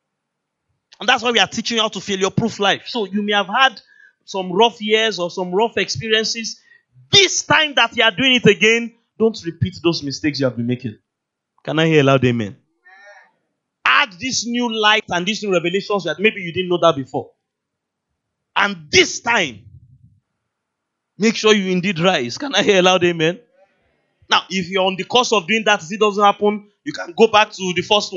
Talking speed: 205 wpm